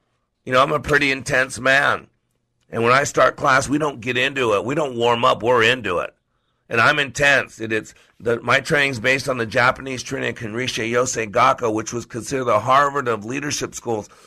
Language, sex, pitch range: English, male, 120-135 Hz